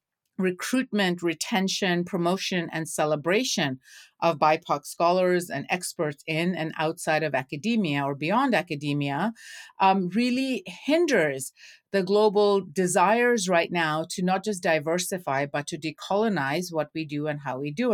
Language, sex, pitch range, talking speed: English, female, 155-200 Hz, 135 wpm